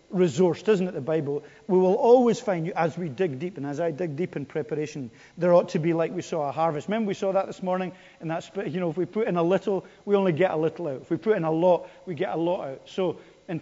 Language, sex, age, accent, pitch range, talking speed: English, male, 40-59, British, 145-190 Hz, 285 wpm